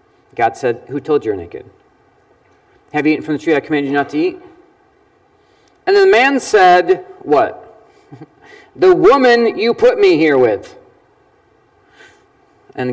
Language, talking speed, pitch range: English, 155 wpm, 280-400 Hz